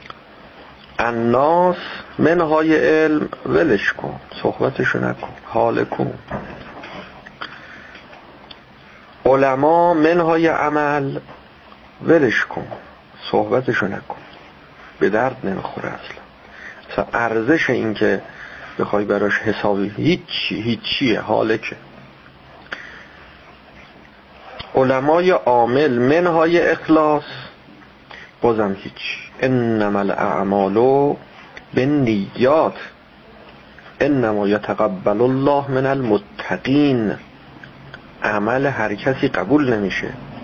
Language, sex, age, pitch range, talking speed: Persian, male, 50-69, 105-150 Hz, 80 wpm